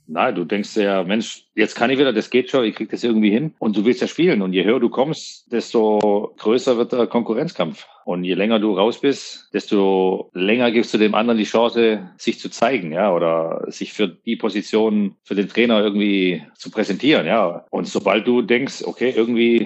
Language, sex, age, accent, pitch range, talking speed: German, male, 40-59, German, 100-120 Hz, 210 wpm